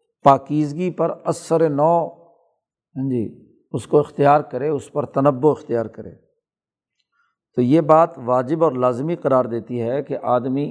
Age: 50-69